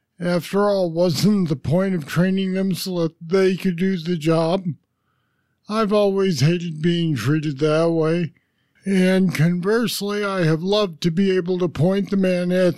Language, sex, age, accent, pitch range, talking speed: English, male, 50-69, American, 155-185 Hz, 165 wpm